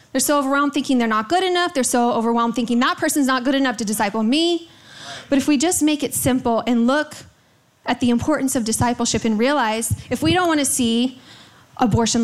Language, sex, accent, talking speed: English, female, American, 210 wpm